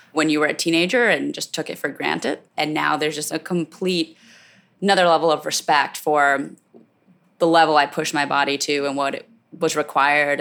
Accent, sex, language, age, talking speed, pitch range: American, female, English, 20-39, 195 wpm, 150-185 Hz